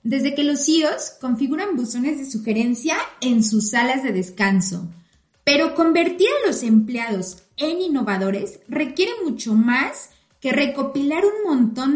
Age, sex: 30-49, female